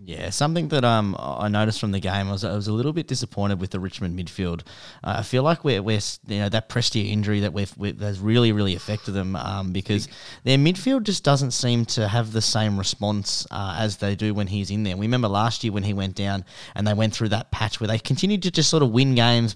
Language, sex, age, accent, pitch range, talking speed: English, male, 20-39, Australian, 100-125 Hz, 250 wpm